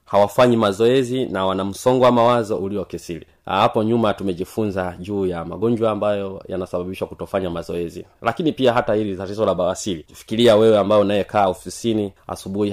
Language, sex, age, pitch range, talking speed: Swahili, male, 30-49, 95-125 Hz, 145 wpm